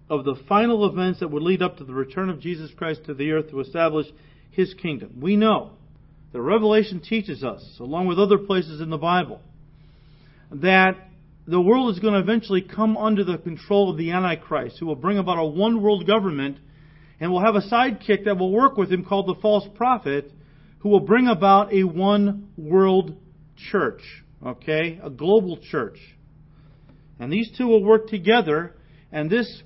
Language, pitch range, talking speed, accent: English, 155-200 Hz, 180 wpm, American